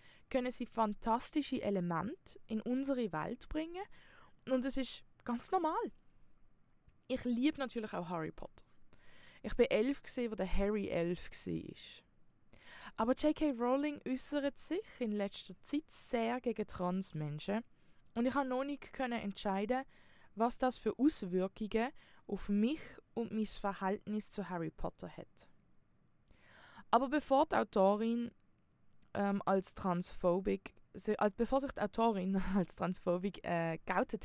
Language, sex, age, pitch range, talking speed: German, female, 20-39, 195-265 Hz, 130 wpm